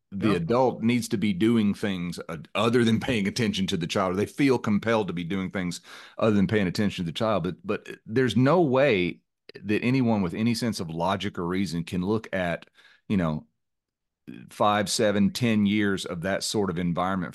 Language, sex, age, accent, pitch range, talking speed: English, male, 40-59, American, 90-115 Hz, 200 wpm